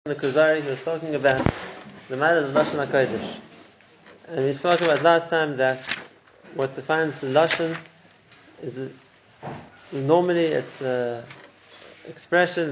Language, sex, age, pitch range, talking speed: English, male, 30-49, 135-155 Hz, 125 wpm